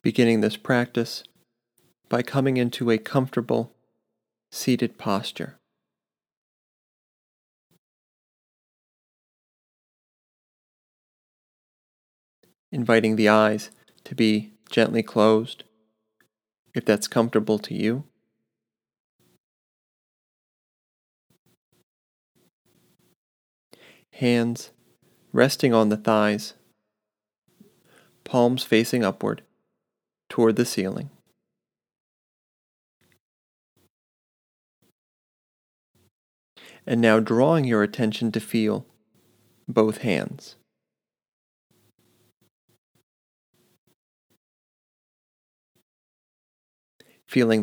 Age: 30-49